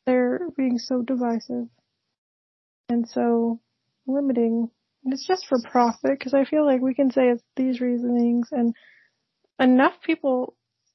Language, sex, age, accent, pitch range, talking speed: English, female, 30-49, American, 240-275 Hz, 135 wpm